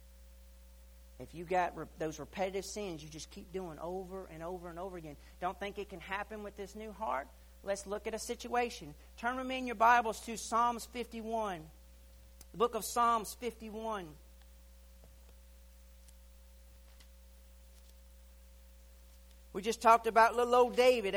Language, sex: English, male